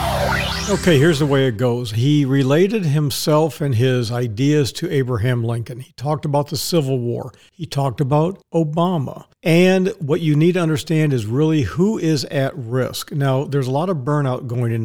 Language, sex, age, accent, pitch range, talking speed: English, male, 50-69, American, 130-160 Hz, 180 wpm